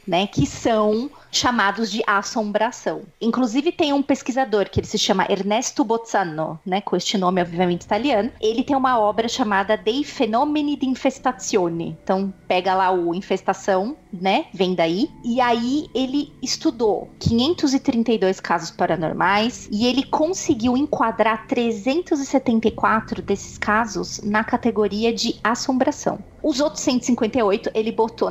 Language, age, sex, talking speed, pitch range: Portuguese, 30-49, female, 130 wpm, 190-235 Hz